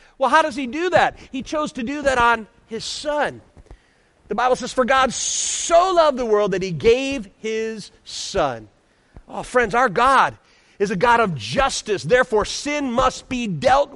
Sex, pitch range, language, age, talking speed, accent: male, 185-265 Hz, English, 40-59, 180 wpm, American